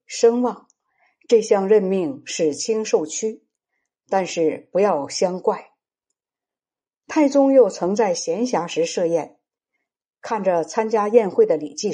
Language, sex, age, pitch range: Chinese, female, 60-79, 205-310 Hz